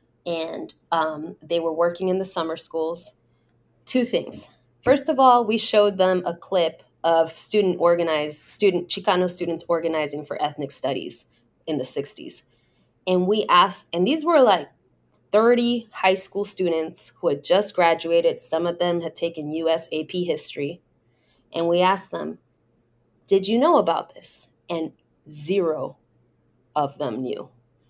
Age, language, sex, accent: 20-39, English, female, American